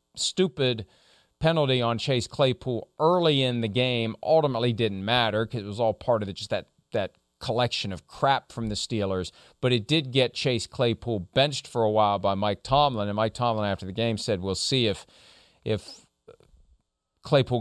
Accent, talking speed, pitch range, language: American, 180 wpm, 115-180 Hz, English